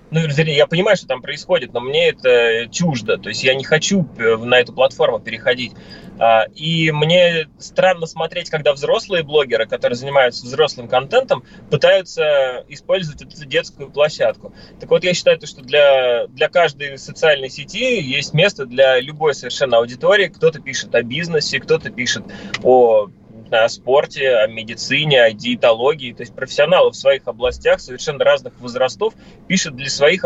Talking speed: 150 wpm